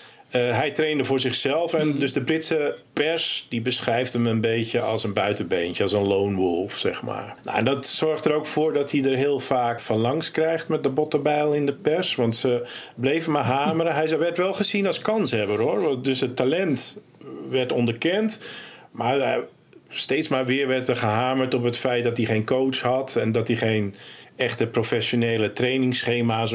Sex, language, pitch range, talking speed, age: male, Dutch, 115-150 Hz, 190 wpm, 50-69